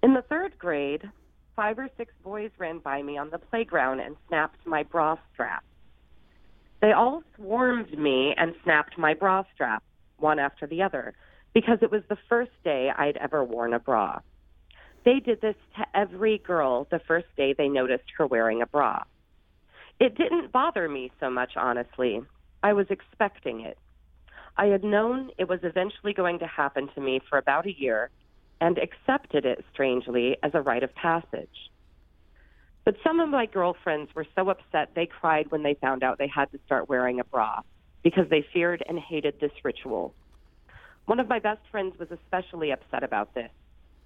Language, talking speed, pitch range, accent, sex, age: English, 180 wpm, 130-200 Hz, American, female, 40-59